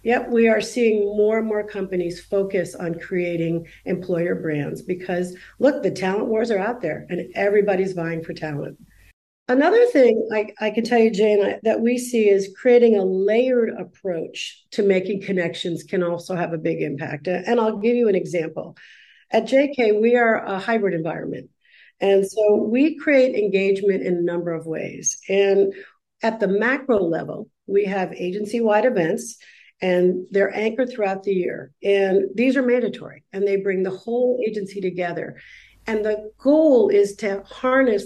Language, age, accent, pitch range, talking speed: English, 50-69, American, 180-230 Hz, 165 wpm